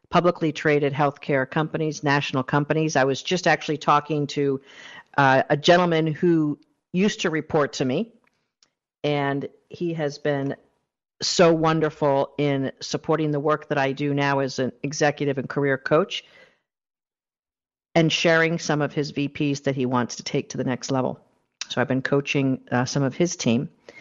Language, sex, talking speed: English, female, 160 wpm